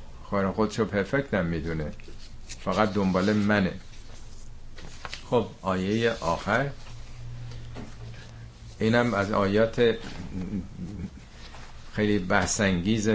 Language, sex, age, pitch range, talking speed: Persian, male, 50-69, 85-105 Hz, 75 wpm